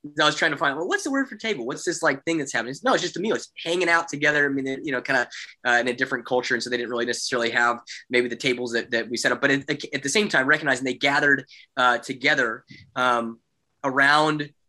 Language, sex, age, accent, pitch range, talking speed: English, male, 20-39, American, 125-155 Hz, 275 wpm